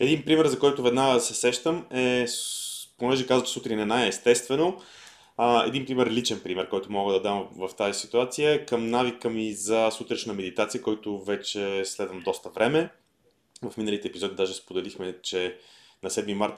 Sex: male